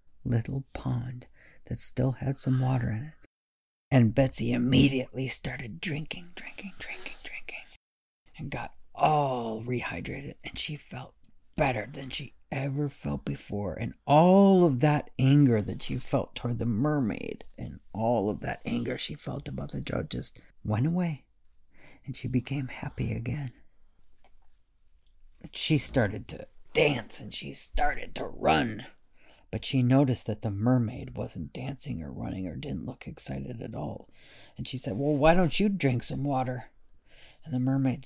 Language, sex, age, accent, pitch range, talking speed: English, male, 40-59, American, 115-140 Hz, 155 wpm